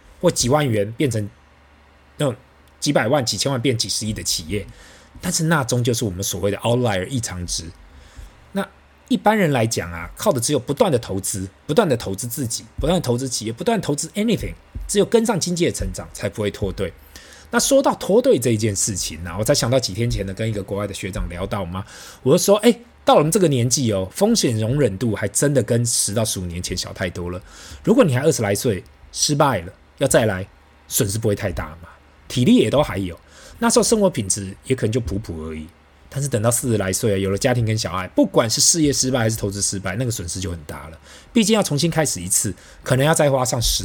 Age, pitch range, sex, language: 20-39, 95-140 Hz, male, Chinese